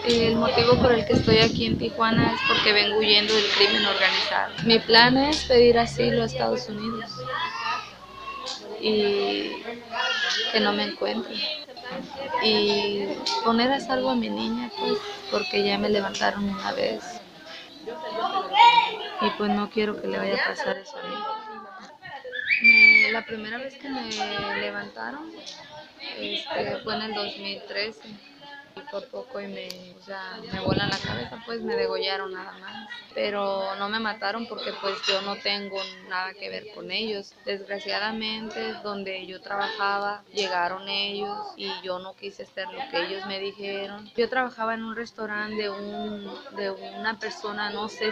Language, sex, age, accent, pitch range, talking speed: English, female, 20-39, Mexican, 200-235 Hz, 155 wpm